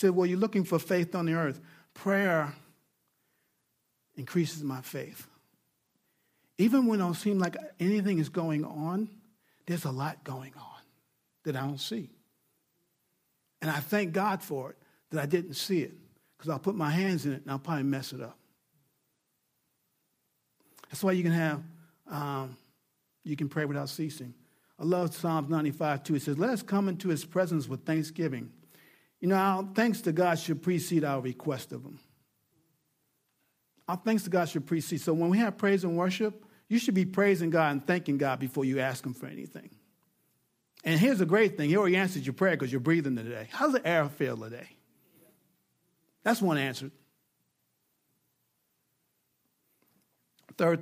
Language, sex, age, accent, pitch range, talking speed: English, male, 50-69, American, 140-190 Hz, 170 wpm